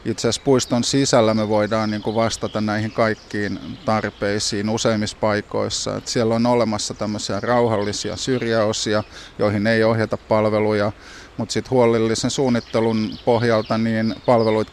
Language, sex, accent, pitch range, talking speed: Finnish, male, native, 105-115 Hz, 115 wpm